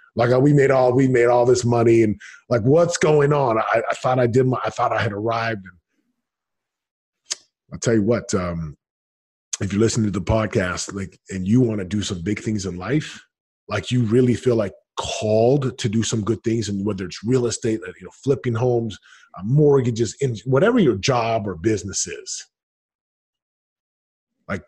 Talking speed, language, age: 185 wpm, English, 30-49